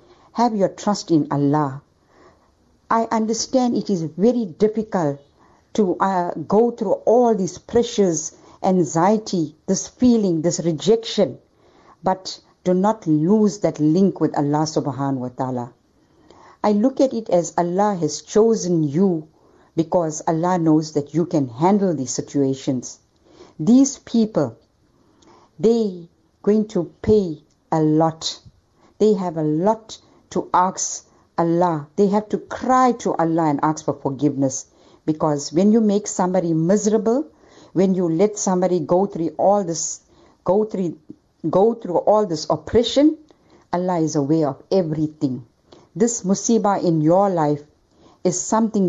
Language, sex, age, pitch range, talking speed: English, female, 60-79, 155-210 Hz, 135 wpm